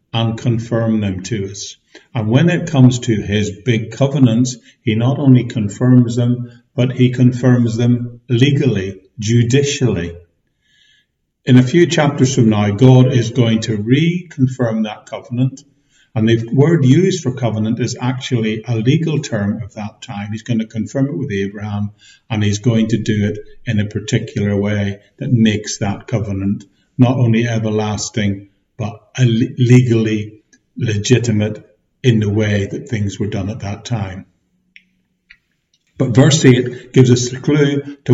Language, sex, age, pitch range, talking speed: English, male, 50-69, 105-130 Hz, 150 wpm